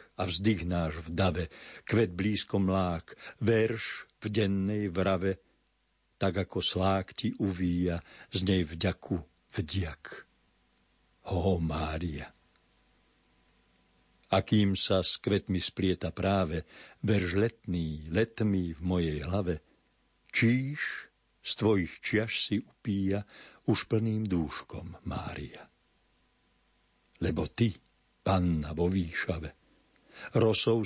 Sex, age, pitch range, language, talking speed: male, 60-79, 85-105 Hz, Slovak, 100 wpm